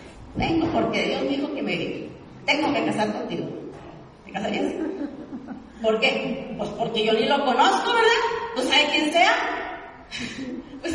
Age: 40-59